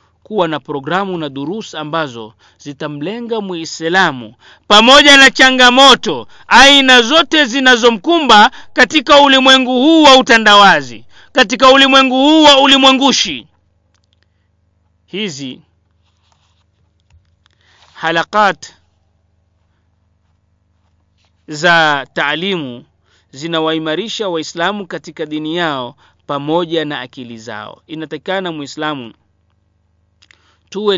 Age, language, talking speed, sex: 40-59, Swahili, 75 wpm, male